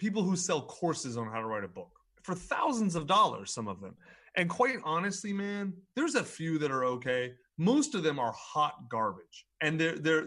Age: 30-49